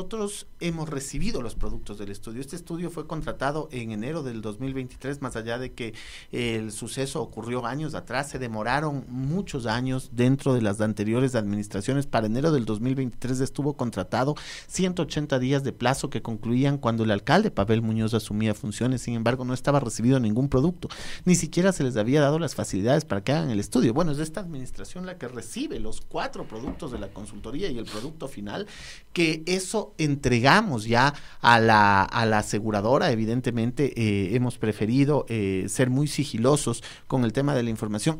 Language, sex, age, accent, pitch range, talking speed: Spanish, male, 40-59, Mexican, 115-150 Hz, 175 wpm